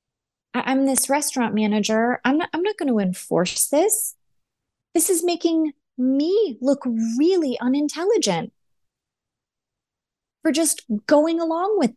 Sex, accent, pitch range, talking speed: female, American, 180-265 Hz, 120 wpm